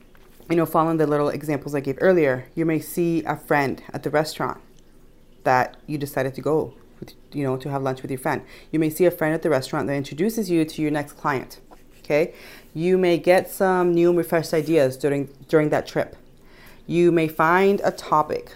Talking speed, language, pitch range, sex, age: 205 wpm, English, 140-165 Hz, female, 30-49